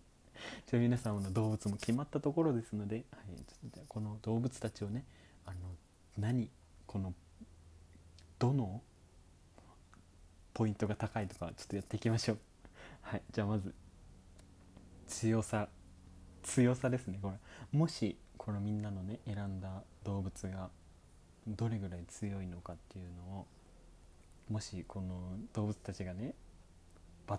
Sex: male